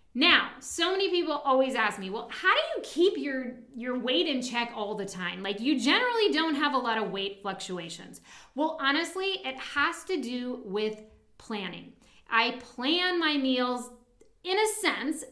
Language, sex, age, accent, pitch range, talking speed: English, female, 40-59, American, 225-325 Hz, 175 wpm